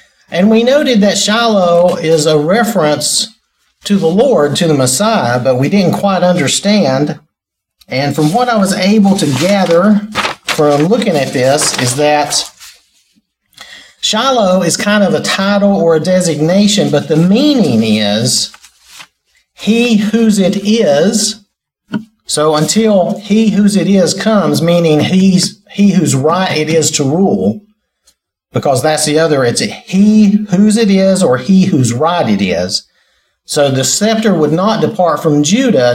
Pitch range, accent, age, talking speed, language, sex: 140-205 Hz, American, 50-69, 150 wpm, English, male